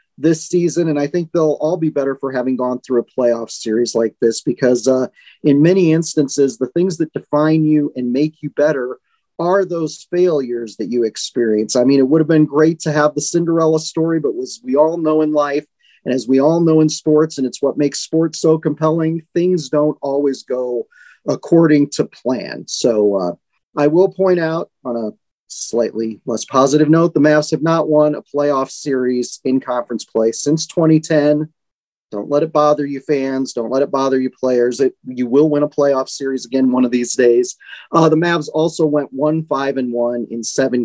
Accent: American